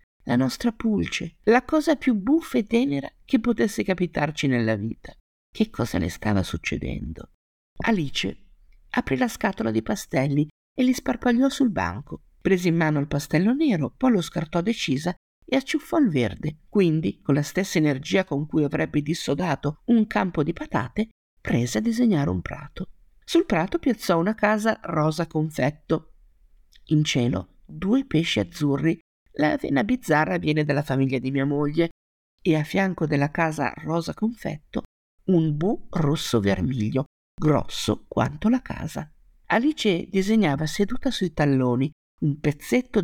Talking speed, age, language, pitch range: 145 wpm, 50-69, Italian, 140-225 Hz